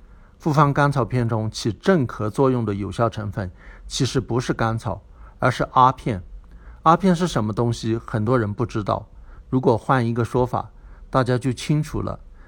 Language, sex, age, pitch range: Chinese, male, 60-79, 100-135 Hz